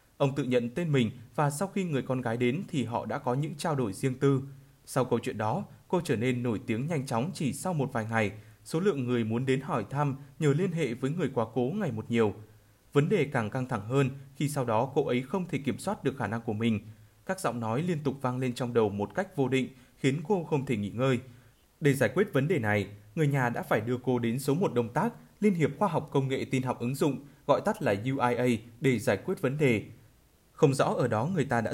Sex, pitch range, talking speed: male, 115-145 Hz, 255 wpm